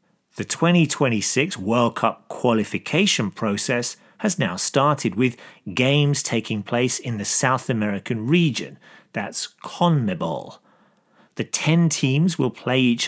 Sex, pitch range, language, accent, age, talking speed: male, 115-160 Hz, English, British, 40-59, 120 wpm